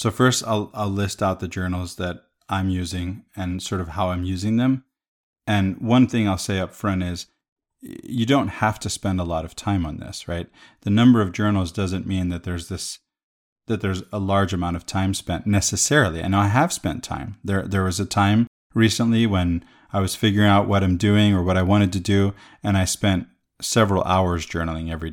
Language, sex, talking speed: English, male, 210 wpm